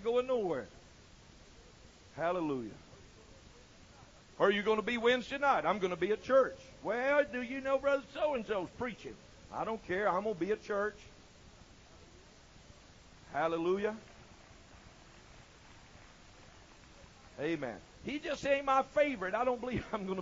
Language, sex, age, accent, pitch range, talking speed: English, male, 60-79, American, 175-275 Hz, 135 wpm